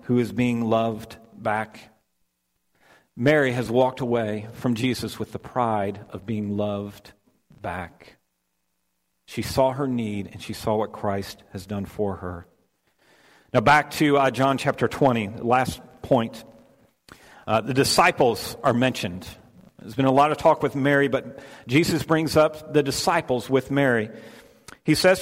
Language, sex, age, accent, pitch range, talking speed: English, male, 50-69, American, 110-150 Hz, 150 wpm